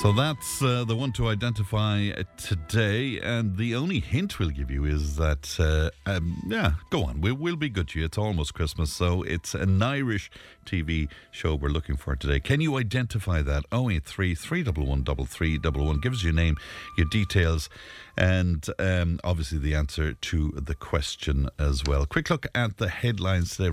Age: 50-69